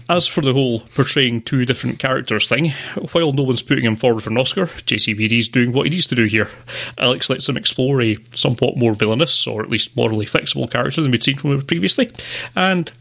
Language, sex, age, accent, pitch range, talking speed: English, male, 30-49, British, 115-140 Hz, 215 wpm